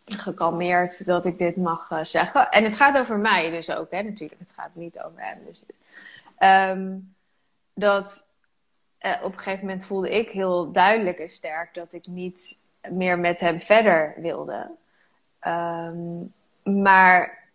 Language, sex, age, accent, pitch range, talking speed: Dutch, female, 20-39, Dutch, 180-225 Hz, 155 wpm